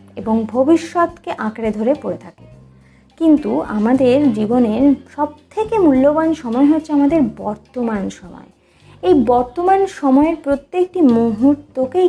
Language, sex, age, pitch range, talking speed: Bengali, female, 20-39, 215-315 Hz, 110 wpm